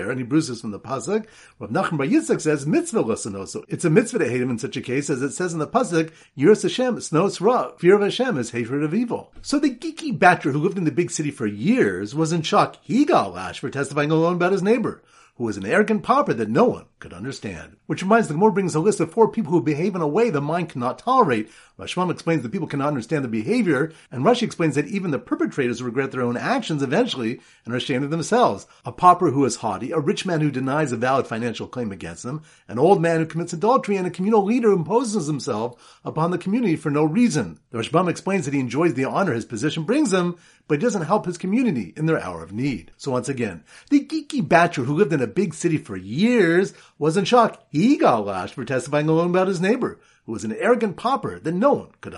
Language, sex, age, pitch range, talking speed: English, male, 40-59, 140-205 Hz, 235 wpm